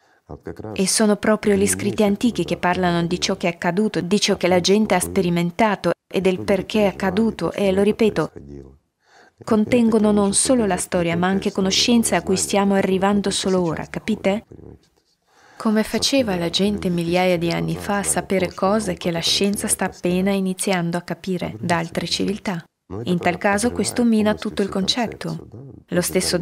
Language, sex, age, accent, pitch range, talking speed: Italian, female, 20-39, native, 170-200 Hz, 170 wpm